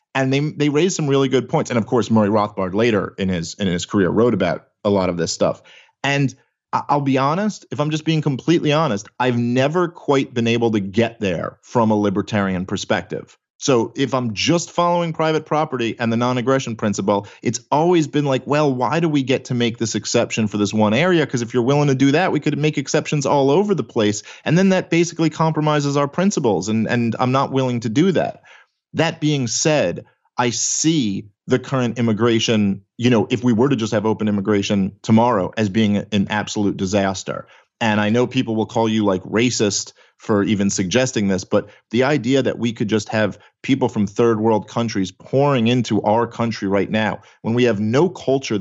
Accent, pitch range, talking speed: American, 105-140 Hz, 205 wpm